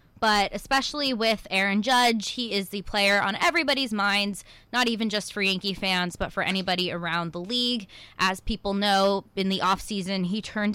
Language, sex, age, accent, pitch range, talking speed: English, female, 20-39, American, 180-230 Hz, 180 wpm